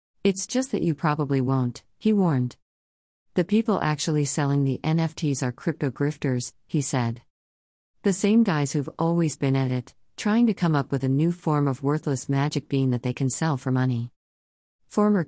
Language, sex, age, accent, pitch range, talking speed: English, female, 50-69, American, 125-160 Hz, 180 wpm